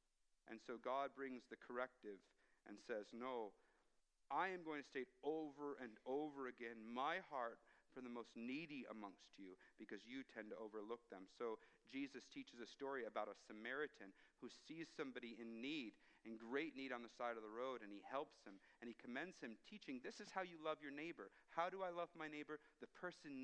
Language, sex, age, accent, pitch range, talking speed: English, male, 50-69, American, 120-175 Hz, 200 wpm